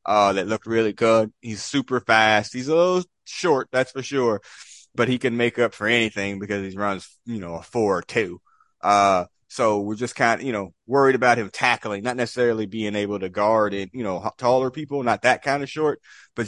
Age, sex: 30-49, male